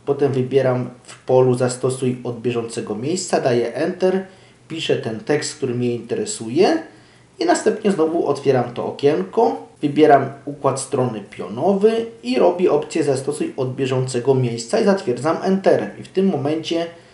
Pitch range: 125-145 Hz